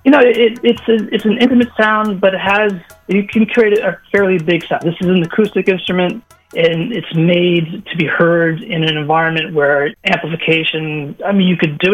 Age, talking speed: 30-49, 200 wpm